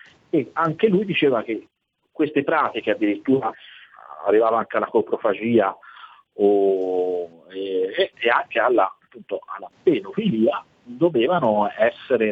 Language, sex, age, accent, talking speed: Italian, male, 40-59, native, 105 wpm